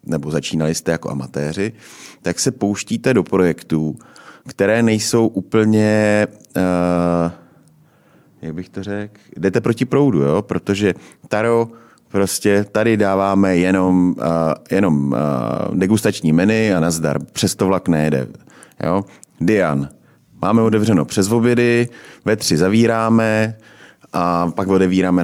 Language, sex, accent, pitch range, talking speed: Czech, male, native, 85-110 Hz, 120 wpm